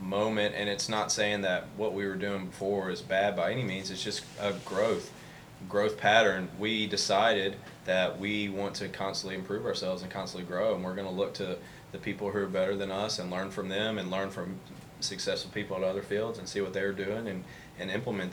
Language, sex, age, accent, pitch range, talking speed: English, male, 20-39, American, 95-100 Hz, 220 wpm